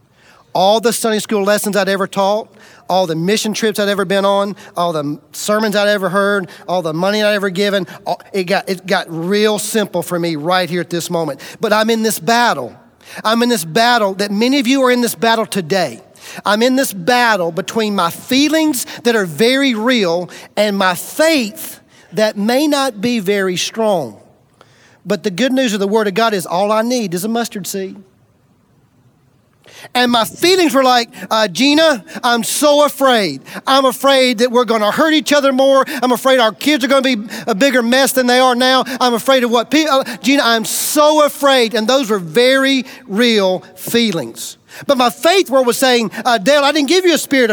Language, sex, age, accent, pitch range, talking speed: English, male, 40-59, American, 200-265 Hz, 205 wpm